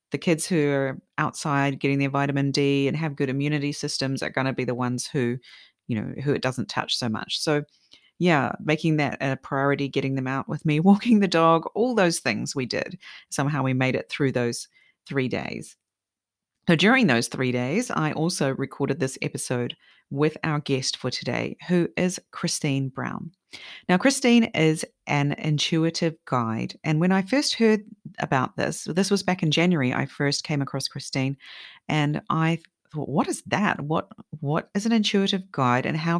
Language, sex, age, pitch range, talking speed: English, female, 40-59, 135-170 Hz, 185 wpm